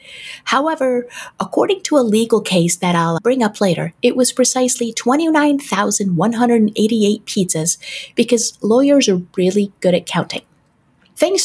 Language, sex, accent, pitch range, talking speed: English, female, American, 185-245 Hz, 125 wpm